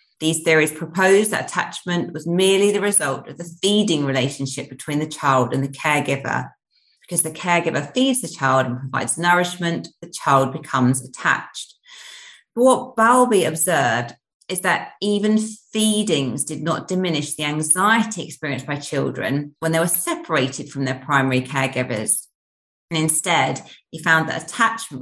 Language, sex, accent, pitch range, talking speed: English, female, British, 145-195 Hz, 150 wpm